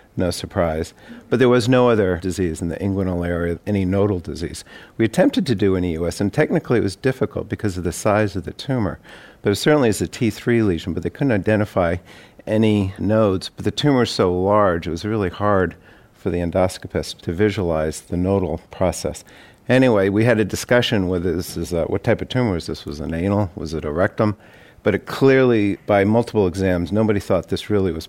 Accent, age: American, 50-69